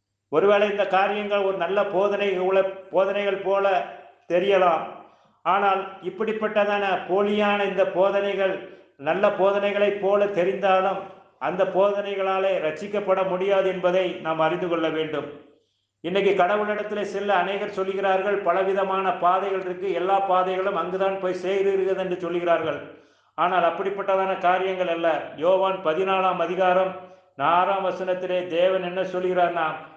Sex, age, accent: male, 50-69, native